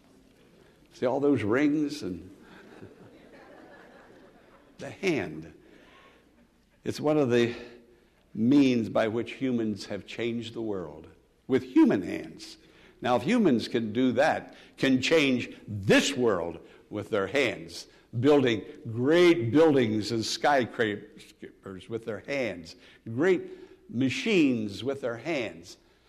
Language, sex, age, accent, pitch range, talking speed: English, male, 60-79, American, 120-190 Hz, 110 wpm